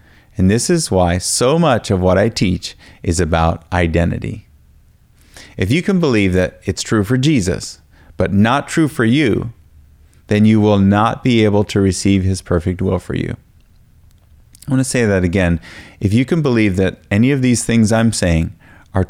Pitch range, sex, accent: 90-120 Hz, male, American